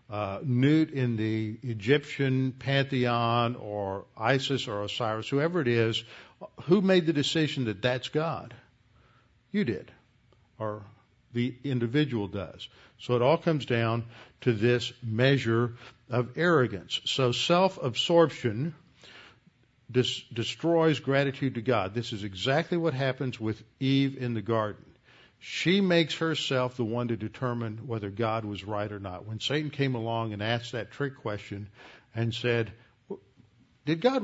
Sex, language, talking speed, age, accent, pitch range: male, English, 135 wpm, 50-69, American, 115-135 Hz